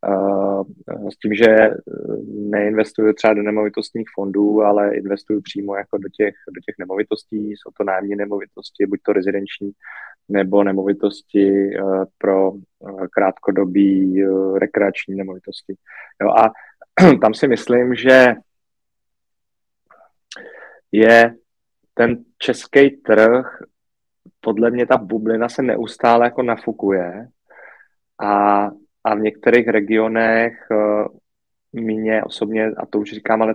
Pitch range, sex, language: 100-110 Hz, male, Czech